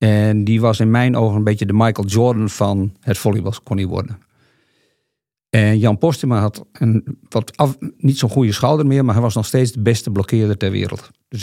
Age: 50-69